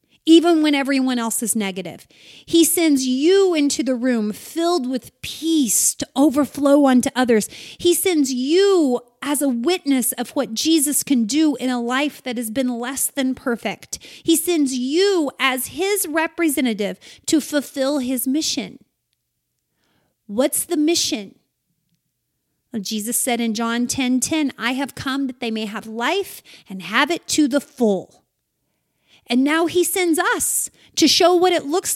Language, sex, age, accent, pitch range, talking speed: English, female, 30-49, American, 245-325 Hz, 155 wpm